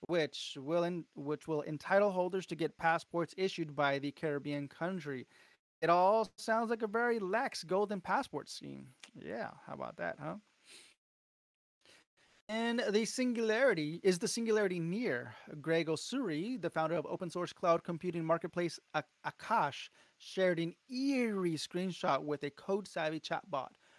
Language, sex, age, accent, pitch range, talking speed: English, male, 30-49, American, 155-190 Hz, 145 wpm